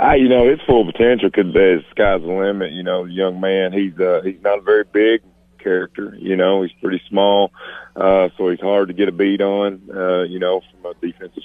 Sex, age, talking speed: male, 40-59, 225 wpm